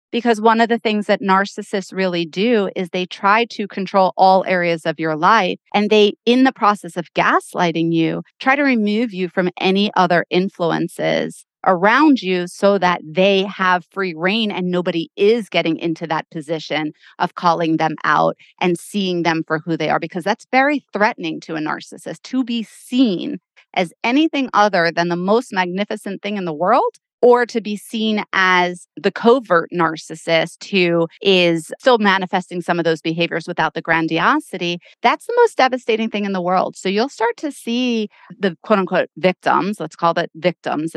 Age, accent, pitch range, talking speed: 30-49, American, 170-210 Hz, 175 wpm